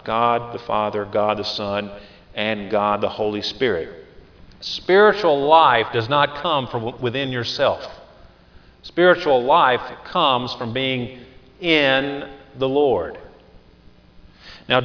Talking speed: 115 wpm